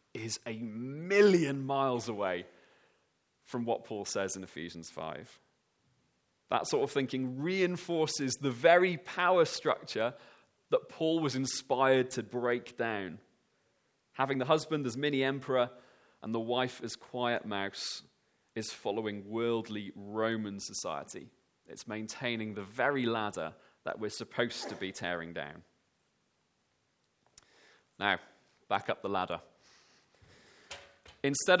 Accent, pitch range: British, 120-180 Hz